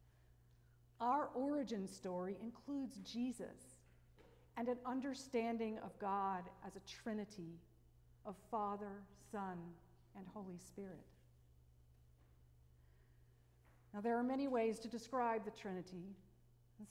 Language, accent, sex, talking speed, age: English, American, female, 105 wpm, 50-69